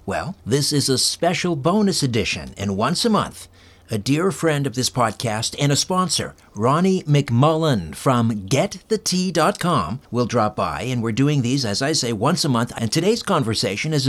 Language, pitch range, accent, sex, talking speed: English, 110-155 Hz, American, male, 175 wpm